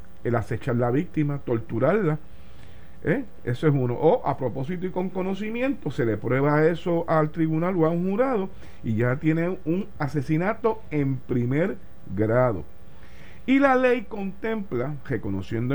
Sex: male